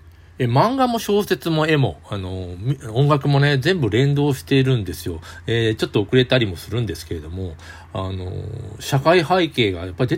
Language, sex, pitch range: Japanese, male, 95-135 Hz